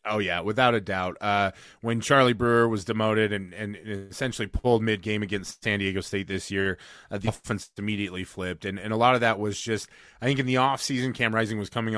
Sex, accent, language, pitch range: male, American, English, 100-115 Hz